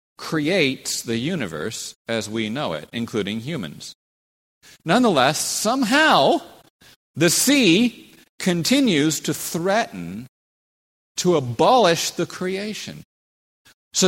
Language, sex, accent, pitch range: English, male, American, 115-175 Hz